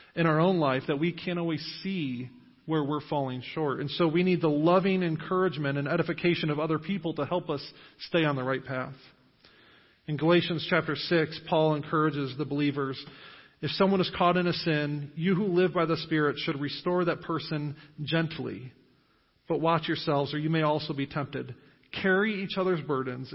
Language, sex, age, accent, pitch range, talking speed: English, male, 40-59, American, 145-175 Hz, 185 wpm